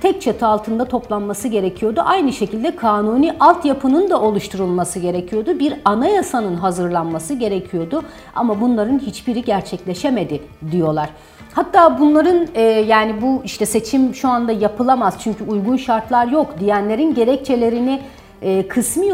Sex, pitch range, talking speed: female, 200-265 Hz, 120 wpm